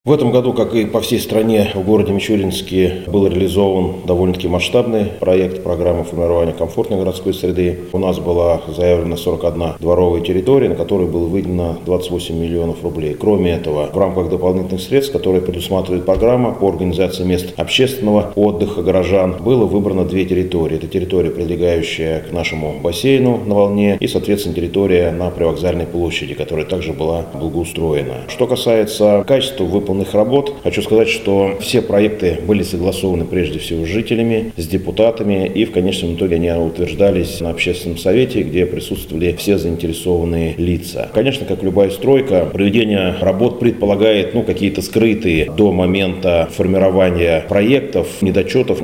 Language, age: Russian, 30-49